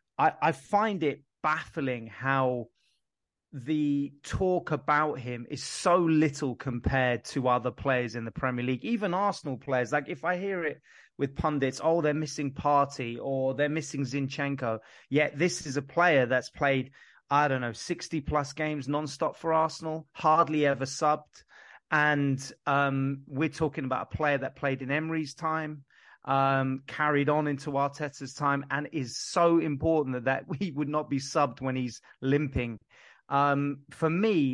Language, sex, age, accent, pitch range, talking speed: English, male, 30-49, British, 130-155 Hz, 160 wpm